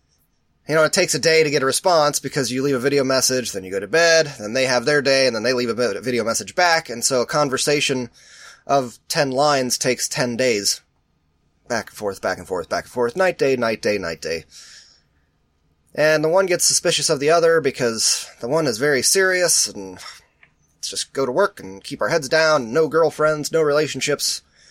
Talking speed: 215 wpm